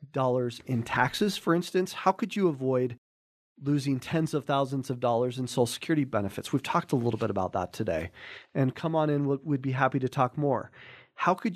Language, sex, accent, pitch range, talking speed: English, male, American, 125-155 Hz, 200 wpm